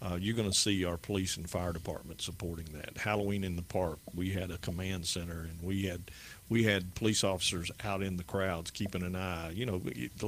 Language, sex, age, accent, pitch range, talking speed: English, male, 50-69, American, 90-105 Hz, 220 wpm